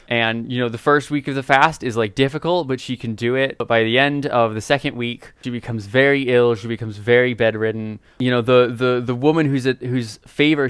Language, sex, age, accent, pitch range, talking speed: English, male, 20-39, American, 110-130 Hz, 240 wpm